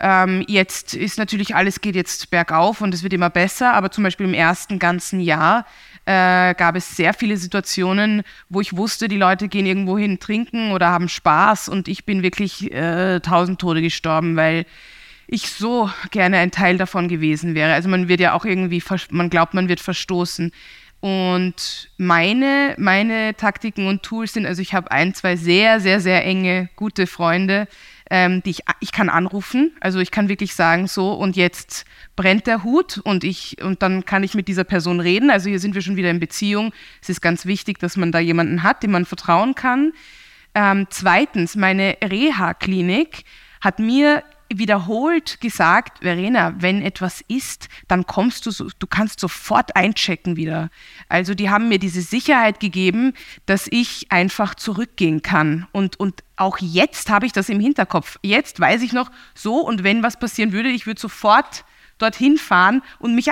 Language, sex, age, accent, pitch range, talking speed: German, female, 20-39, German, 180-220 Hz, 180 wpm